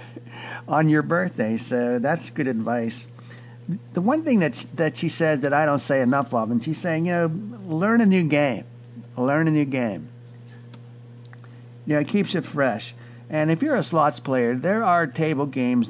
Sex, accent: male, American